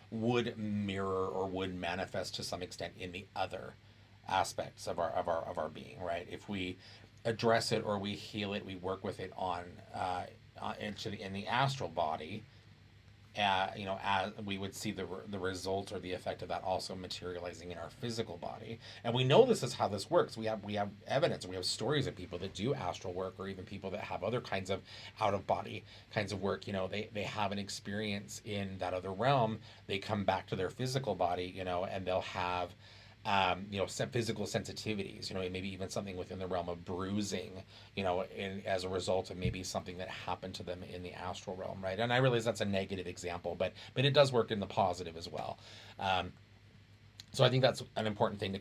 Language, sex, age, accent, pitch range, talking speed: English, male, 30-49, American, 95-110 Hz, 215 wpm